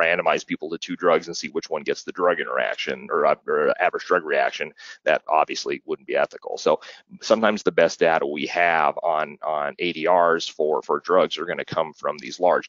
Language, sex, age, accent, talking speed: Italian, male, 30-49, American, 205 wpm